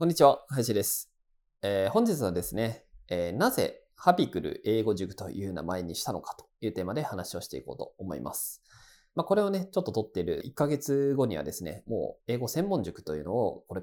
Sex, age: male, 20-39